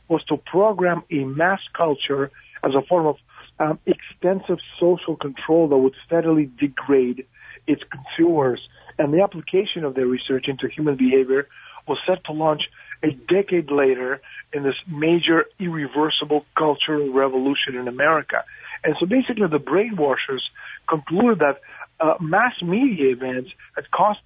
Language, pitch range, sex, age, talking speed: English, 135-175 Hz, male, 50-69, 140 wpm